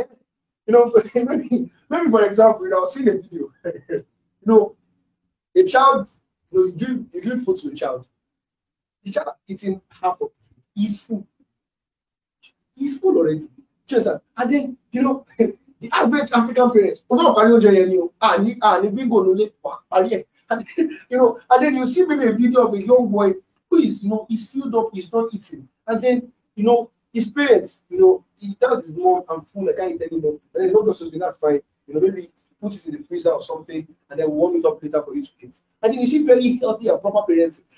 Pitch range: 195-275 Hz